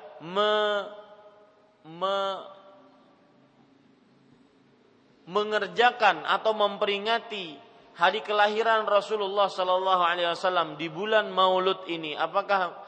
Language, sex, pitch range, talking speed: Malay, male, 180-220 Hz, 75 wpm